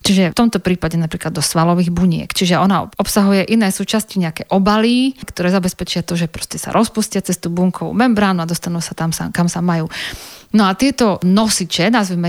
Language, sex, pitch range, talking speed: Slovak, female, 175-210 Hz, 185 wpm